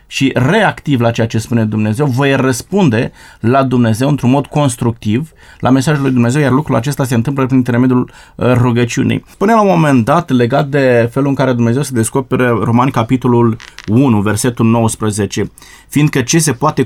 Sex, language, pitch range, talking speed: male, Romanian, 120-145 Hz, 170 wpm